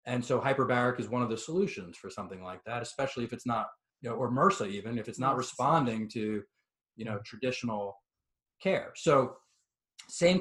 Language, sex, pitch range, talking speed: English, male, 115-145 Hz, 185 wpm